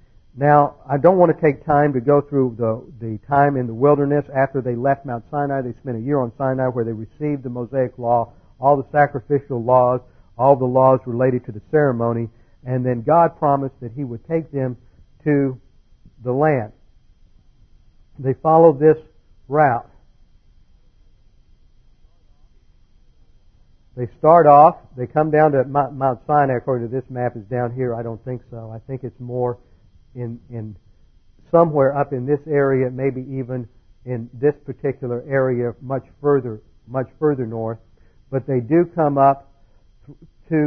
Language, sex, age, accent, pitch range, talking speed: English, male, 50-69, American, 120-140 Hz, 160 wpm